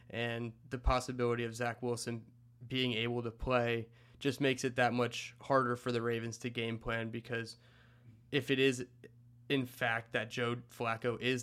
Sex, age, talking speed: male, 20-39, 170 wpm